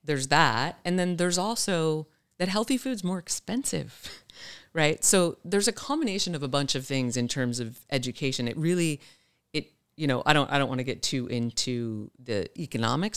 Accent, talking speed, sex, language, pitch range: American, 185 wpm, female, English, 125-165 Hz